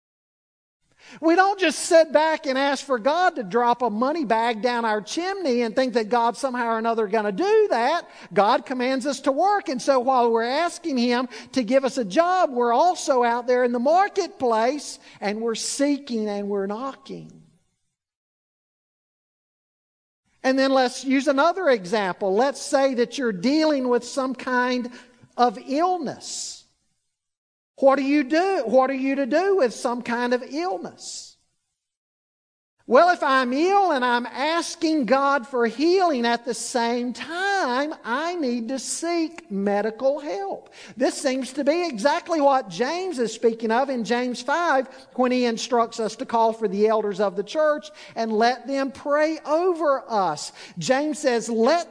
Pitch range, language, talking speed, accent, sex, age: 235-300 Hz, English, 165 wpm, American, male, 50-69